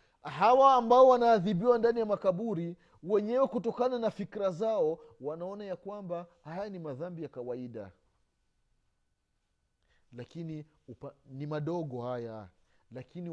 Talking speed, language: 115 wpm, Swahili